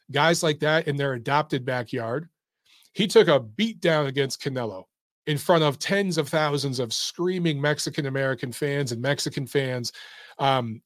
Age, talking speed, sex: 40-59, 155 wpm, male